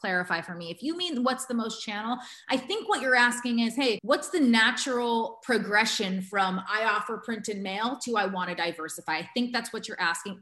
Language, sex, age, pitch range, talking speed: English, female, 30-49, 195-255 Hz, 220 wpm